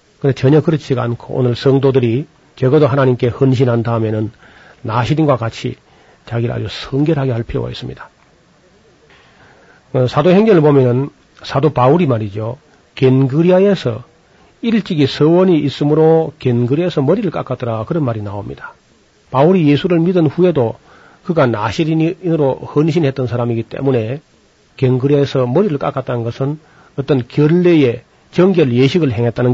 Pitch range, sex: 125-155 Hz, male